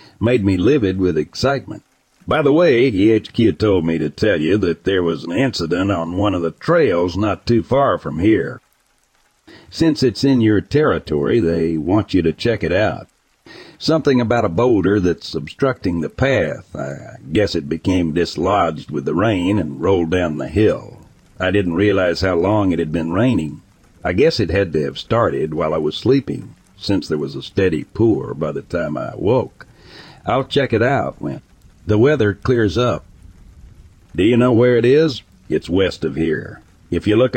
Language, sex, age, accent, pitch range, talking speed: English, male, 60-79, American, 85-115 Hz, 185 wpm